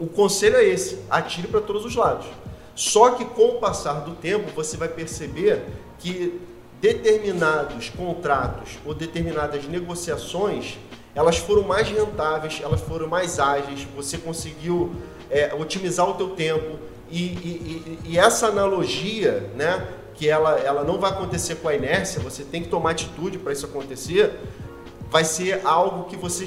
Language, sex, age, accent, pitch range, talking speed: Portuguese, male, 40-59, Brazilian, 155-200 Hz, 155 wpm